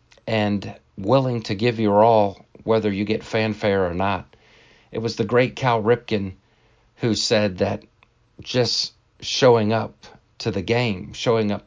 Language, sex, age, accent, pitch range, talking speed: English, male, 50-69, American, 95-110 Hz, 150 wpm